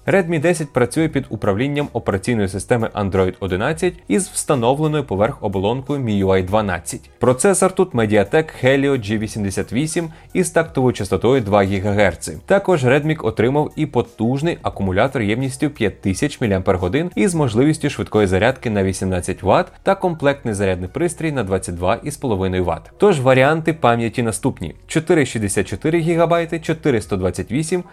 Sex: male